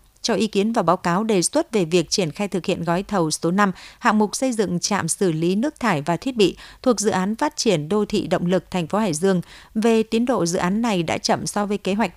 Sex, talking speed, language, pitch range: female, 270 wpm, Vietnamese, 180-225 Hz